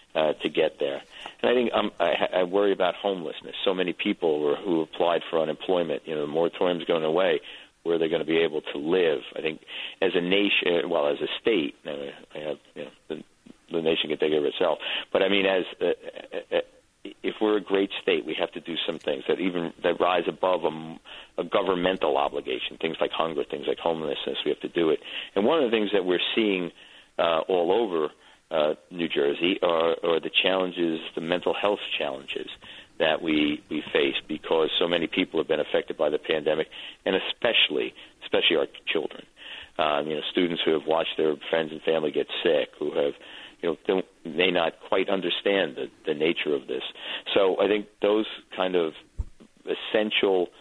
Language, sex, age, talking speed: English, male, 50-69, 205 wpm